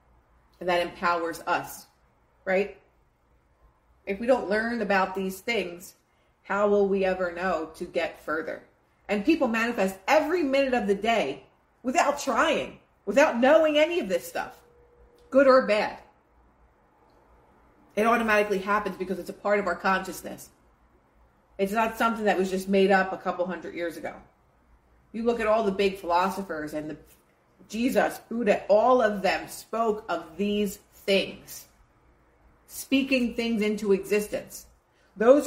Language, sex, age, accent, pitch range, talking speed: English, female, 40-59, American, 165-230 Hz, 145 wpm